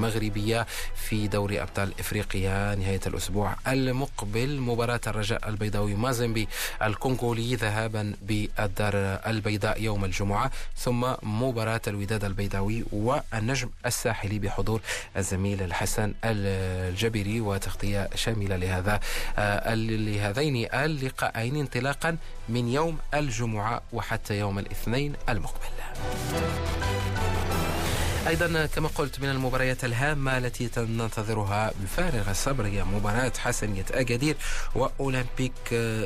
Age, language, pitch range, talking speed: 30-49, Arabic, 100-125 Hz, 90 wpm